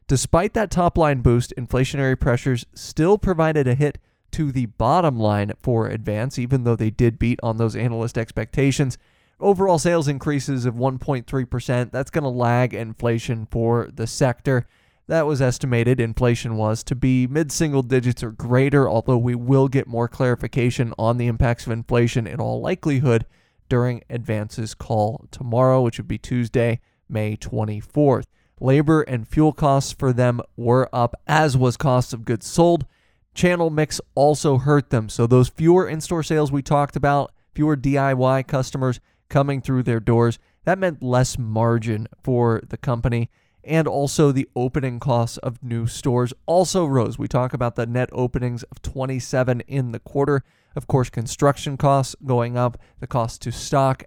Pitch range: 120-140 Hz